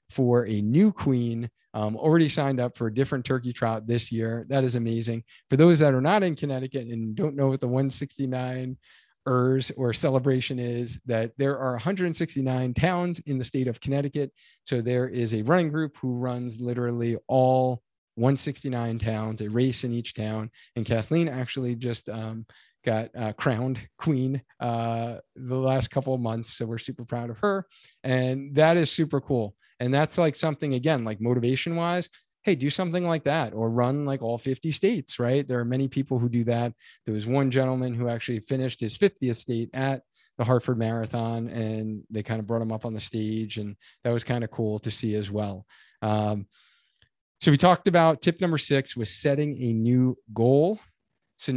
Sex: male